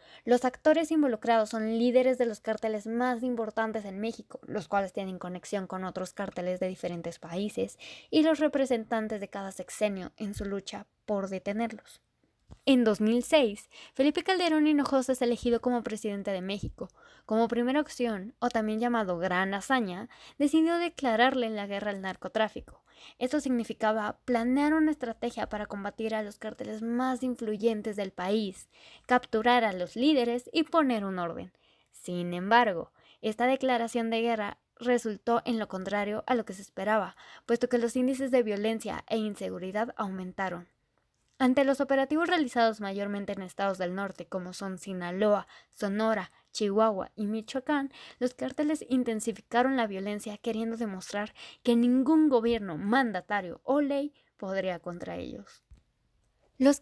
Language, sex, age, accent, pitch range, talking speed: Spanish, female, 10-29, Mexican, 195-245 Hz, 145 wpm